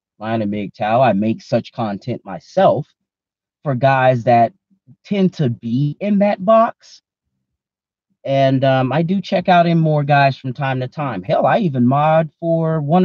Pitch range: 105-150 Hz